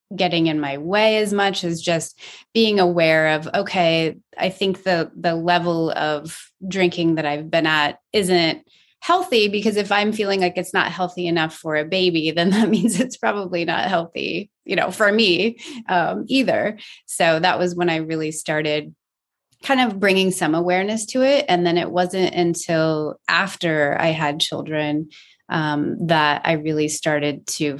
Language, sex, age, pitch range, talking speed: English, female, 30-49, 155-190 Hz, 170 wpm